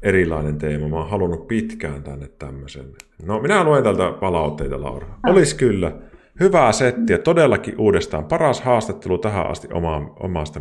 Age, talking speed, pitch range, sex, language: 30-49, 145 wpm, 75-115 Hz, male, Finnish